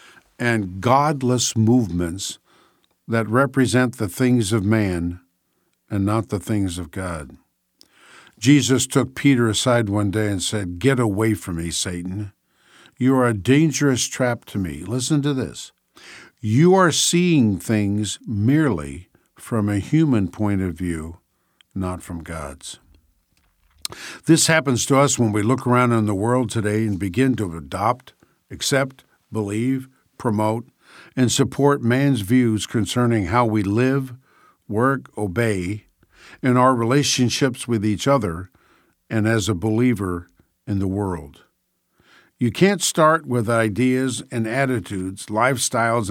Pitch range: 100-130 Hz